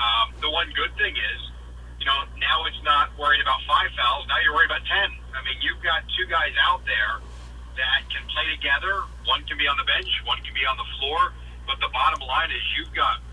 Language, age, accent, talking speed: English, 40-59, American, 230 wpm